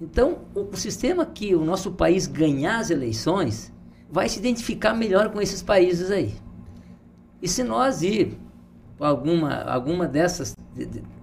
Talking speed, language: 140 wpm, Portuguese